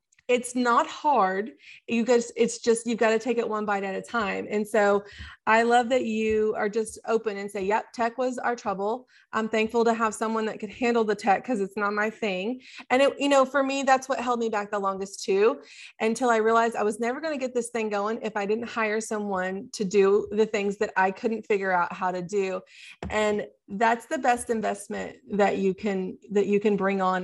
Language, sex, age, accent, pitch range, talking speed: English, female, 20-39, American, 205-245 Hz, 230 wpm